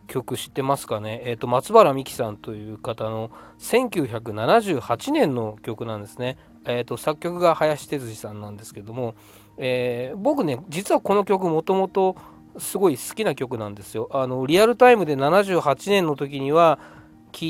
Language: Japanese